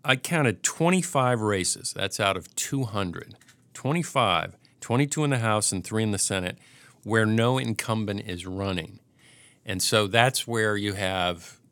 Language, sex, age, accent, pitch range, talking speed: English, male, 50-69, American, 95-125 Hz, 150 wpm